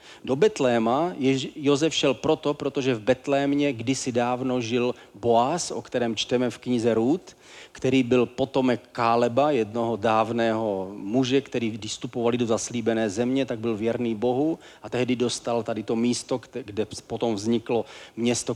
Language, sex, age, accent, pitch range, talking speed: Czech, male, 40-59, native, 115-135 Hz, 145 wpm